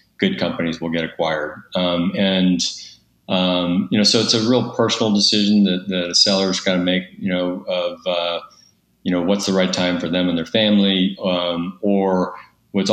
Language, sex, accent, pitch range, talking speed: English, male, American, 85-100 Hz, 200 wpm